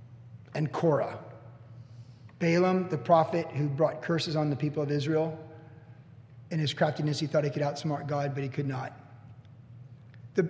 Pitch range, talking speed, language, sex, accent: 125-160 Hz, 155 wpm, English, male, American